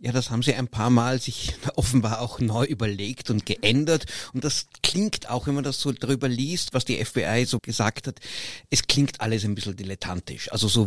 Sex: male